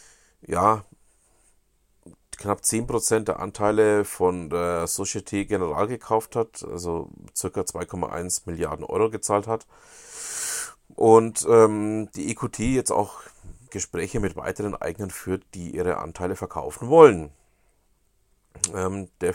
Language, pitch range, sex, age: German, 85-110 Hz, male, 40-59